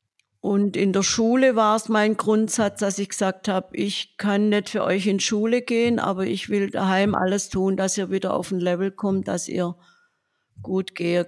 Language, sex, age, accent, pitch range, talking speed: German, female, 50-69, German, 175-205 Hz, 195 wpm